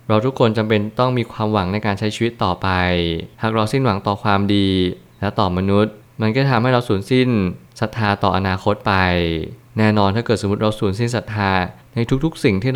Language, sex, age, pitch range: Thai, male, 20-39, 95-115 Hz